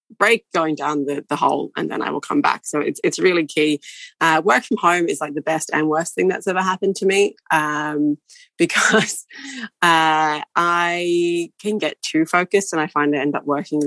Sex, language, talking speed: female, English, 210 wpm